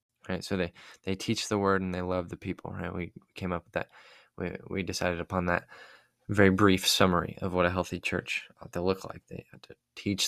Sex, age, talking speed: male, 20-39, 230 wpm